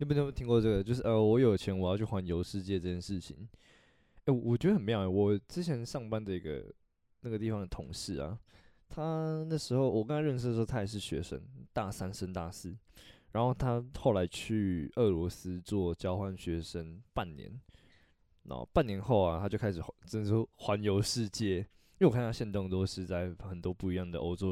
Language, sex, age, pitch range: Chinese, male, 20-39, 90-120 Hz